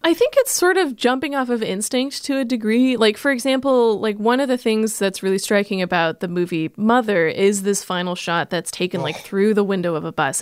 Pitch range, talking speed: 180-235 Hz, 230 wpm